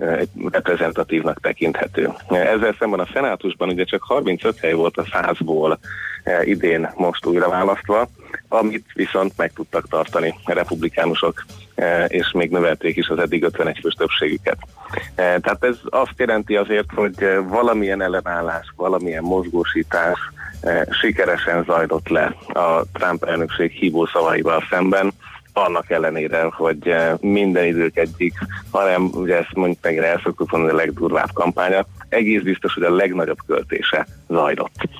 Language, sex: Hungarian, male